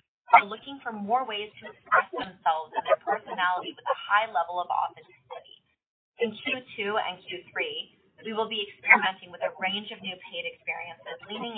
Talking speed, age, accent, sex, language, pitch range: 170 wpm, 30-49, American, female, English, 180-230 Hz